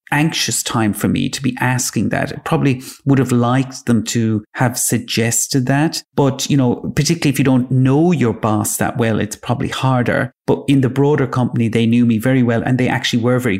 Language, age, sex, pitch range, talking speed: English, 30-49, male, 115-140 Hz, 210 wpm